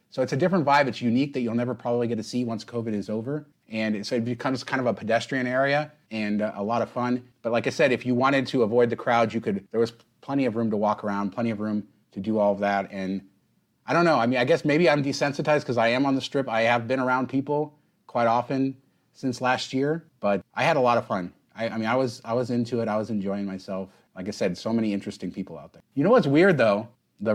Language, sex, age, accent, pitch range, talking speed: English, male, 30-49, American, 110-130 Hz, 270 wpm